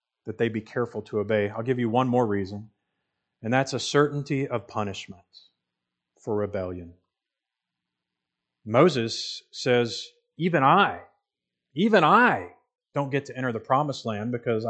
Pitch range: 90-130 Hz